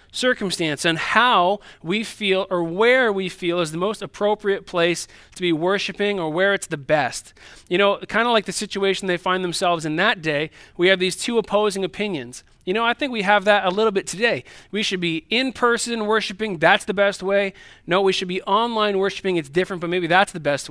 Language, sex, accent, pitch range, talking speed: English, male, American, 160-210 Hz, 215 wpm